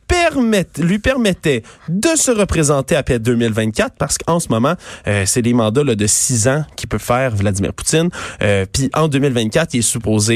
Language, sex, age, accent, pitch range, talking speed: French, male, 20-39, Canadian, 110-160 Hz, 180 wpm